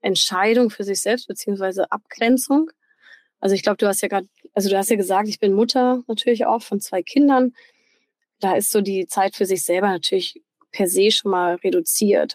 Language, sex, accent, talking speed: German, female, German, 195 wpm